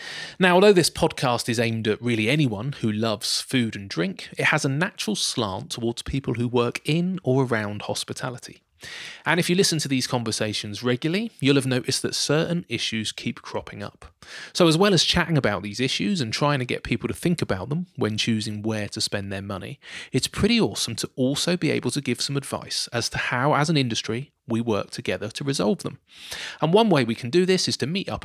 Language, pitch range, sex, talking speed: English, 115-165 Hz, male, 215 wpm